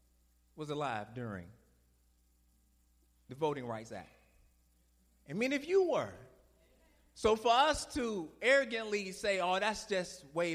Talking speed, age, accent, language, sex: 125 wpm, 30-49, American, English, male